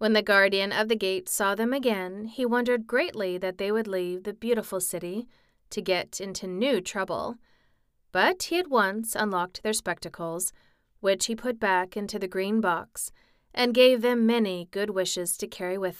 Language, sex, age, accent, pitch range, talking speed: English, female, 30-49, American, 185-240 Hz, 180 wpm